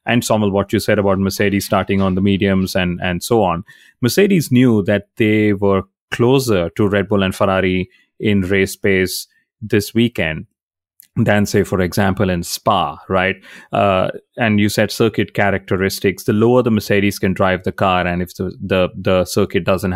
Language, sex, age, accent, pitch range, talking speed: English, male, 30-49, Indian, 95-105 Hz, 175 wpm